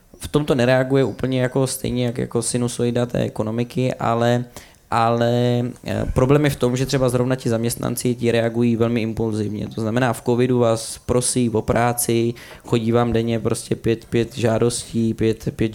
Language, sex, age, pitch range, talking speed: Czech, male, 20-39, 110-120 Hz, 160 wpm